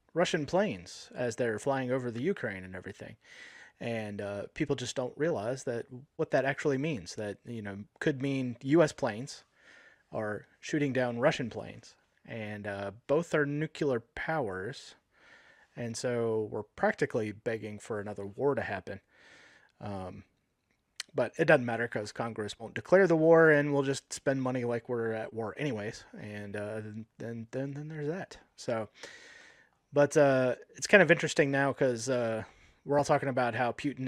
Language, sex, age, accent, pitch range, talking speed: English, male, 30-49, American, 115-150 Hz, 160 wpm